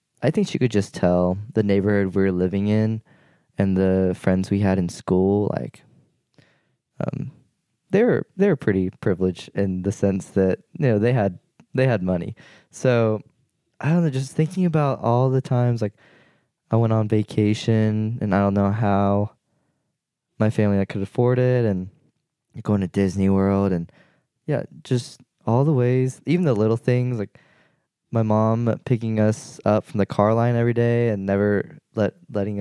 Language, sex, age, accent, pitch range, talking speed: English, male, 20-39, American, 100-125 Hz, 175 wpm